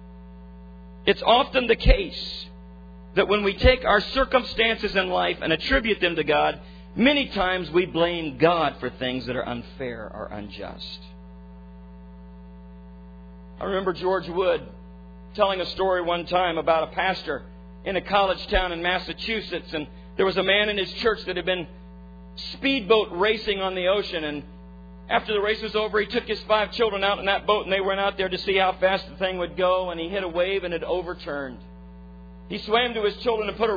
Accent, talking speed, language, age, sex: American, 190 wpm, English, 50-69, male